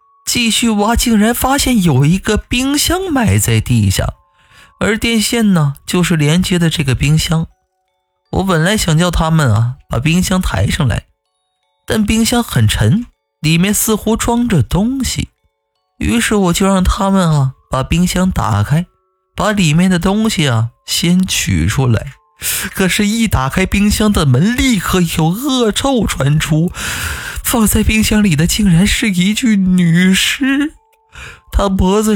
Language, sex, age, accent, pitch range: Chinese, male, 20-39, native, 130-210 Hz